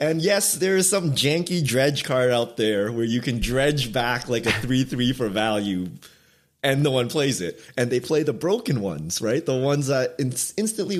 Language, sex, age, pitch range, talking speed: English, male, 20-39, 105-150 Hz, 215 wpm